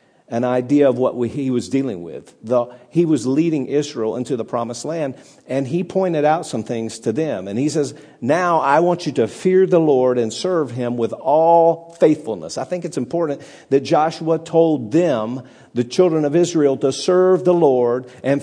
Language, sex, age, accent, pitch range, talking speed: English, male, 50-69, American, 140-185 Hz, 190 wpm